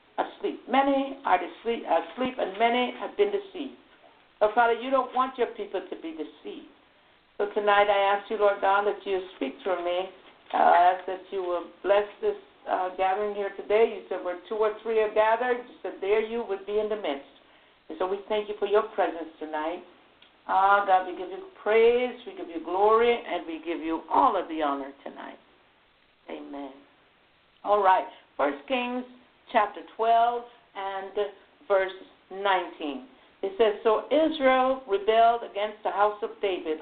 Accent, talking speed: American, 175 wpm